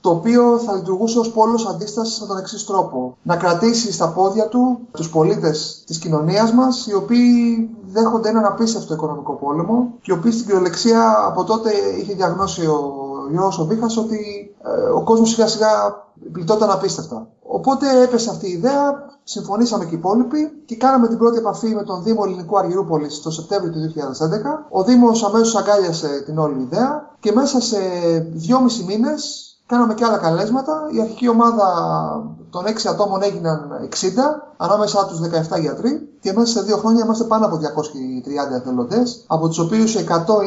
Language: English